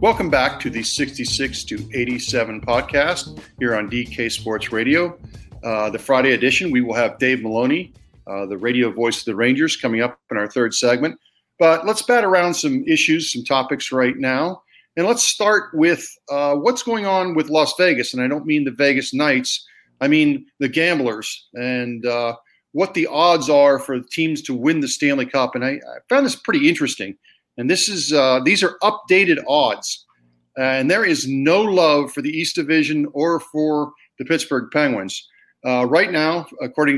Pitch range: 125-190 Hz